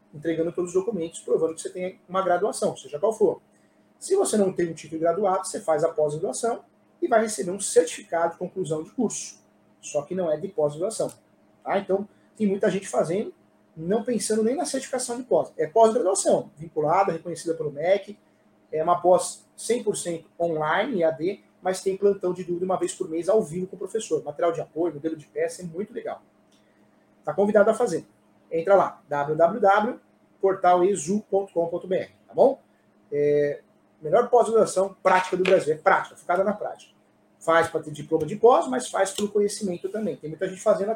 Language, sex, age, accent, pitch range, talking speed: Portuguese, male, 30-49, Brazilian, 155-205 Hz, 180 wpm